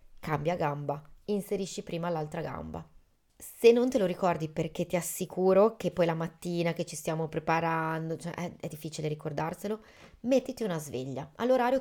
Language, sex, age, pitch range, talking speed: Italian, female, 30-49, 160-205 Hz, 150 wpm